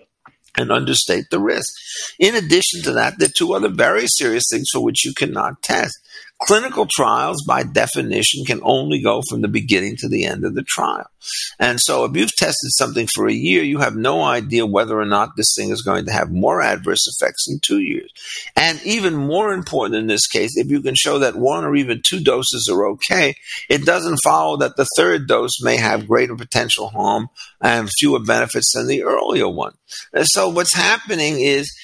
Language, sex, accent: English, male, American